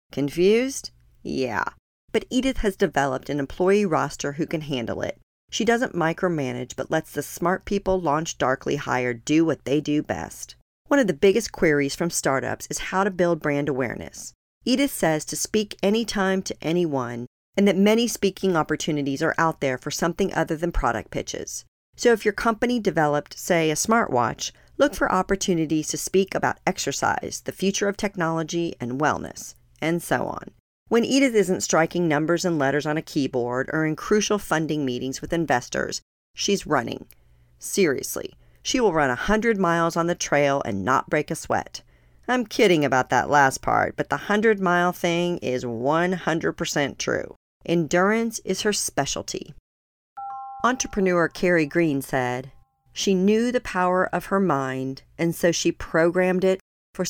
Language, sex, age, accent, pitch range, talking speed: English, female, 40-59, American, 145-195 Hz, 160 wpm